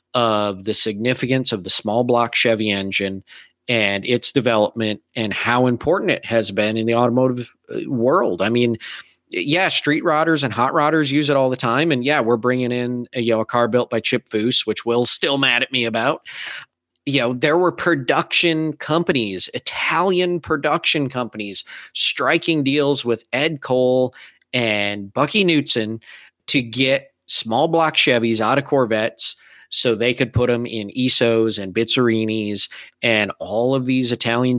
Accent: American